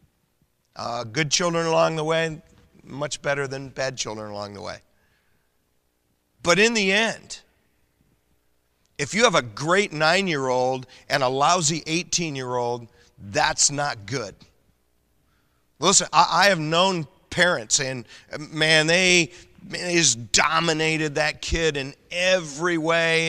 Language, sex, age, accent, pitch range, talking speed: English, male, 40-59, American, 125-165 Hz, 120 wpm